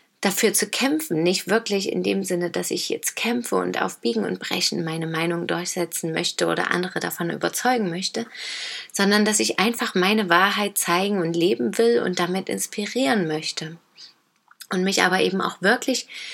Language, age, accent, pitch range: German, 30-49, German, 180-225 Hz